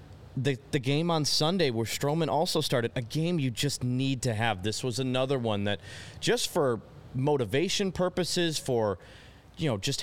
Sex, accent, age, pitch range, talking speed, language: male, American, 30-49, 115-150 Hz, 175 wpm, English